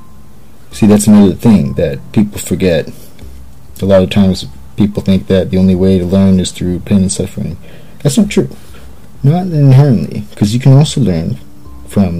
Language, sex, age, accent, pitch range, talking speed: English, male, 40-59, American, 95-115 Hz, 170 wpm